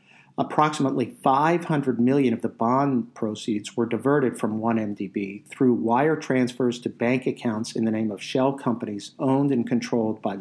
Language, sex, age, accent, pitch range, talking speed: English, male, 50-69, American, 110-130 Hz, 155 wpm